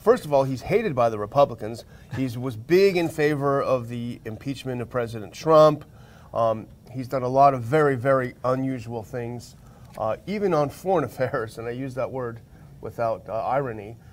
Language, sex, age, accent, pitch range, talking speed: English, male, 40-59, American, 120-150 Hz, 180 wpm